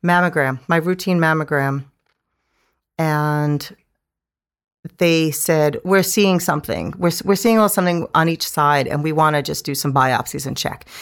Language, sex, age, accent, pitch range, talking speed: English, female, 40-59, American, 150-195 Hz, 160 wpm